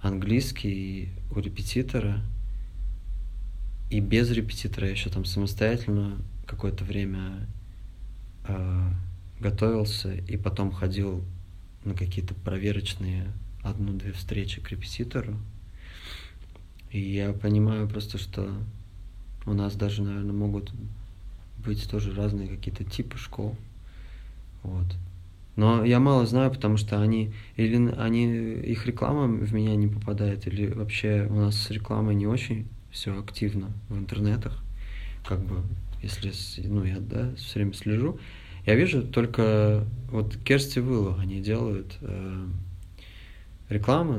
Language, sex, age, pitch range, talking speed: Russian, male, 20-39, 95-110 Hz, 120 wpm